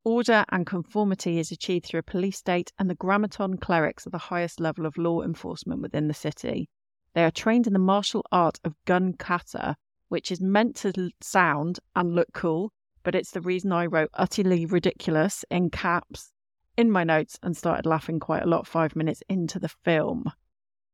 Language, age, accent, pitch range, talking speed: English, 30-49, British, 165-200 Hz, 185 wpm